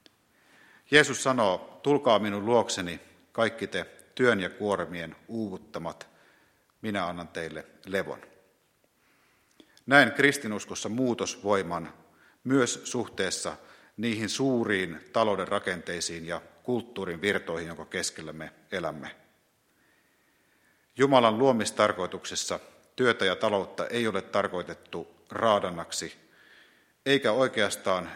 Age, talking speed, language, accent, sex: 50-69, 90 wpm, Finnish, native, male